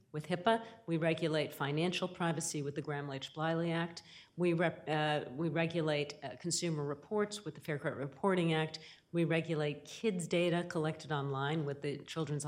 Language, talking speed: English, 165 wpm